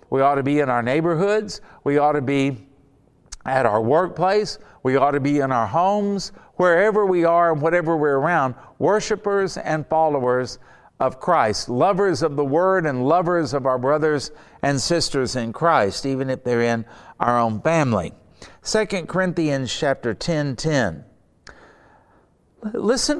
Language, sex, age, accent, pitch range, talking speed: English, male, 50-69, American, 130-190 Hz, 155 wpm